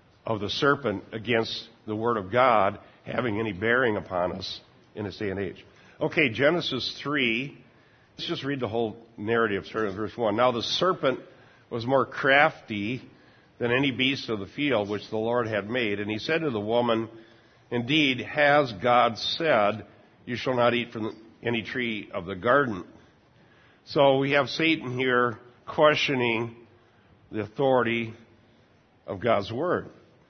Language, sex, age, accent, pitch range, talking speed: English, male, 60-79, American, 110-130 Hz, 155 wpm